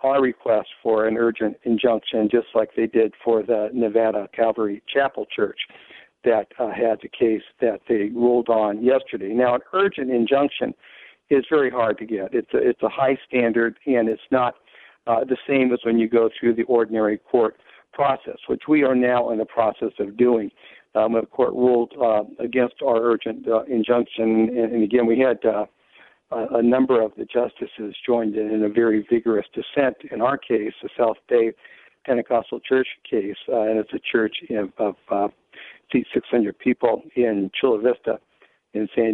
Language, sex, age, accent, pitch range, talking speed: English, male, 60-79, American, 110-125 Hz, 180 wpm